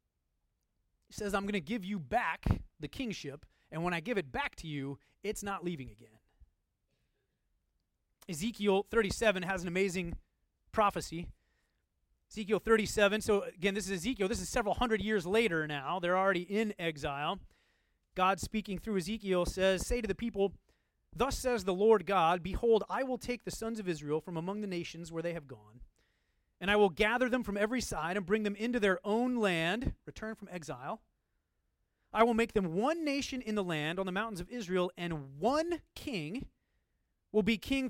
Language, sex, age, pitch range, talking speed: English, male, 30-49, 170-220 Hz, 180 wpm